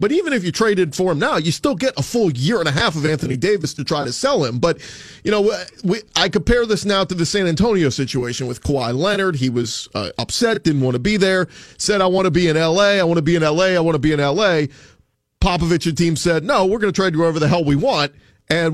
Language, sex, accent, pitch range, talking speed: English, male, American, 150-190 Hz, 270 wpm